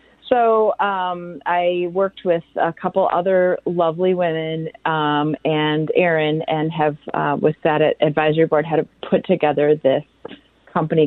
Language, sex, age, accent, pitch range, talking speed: English, female, 30-49, American, 155-195 Hz, 140 wpm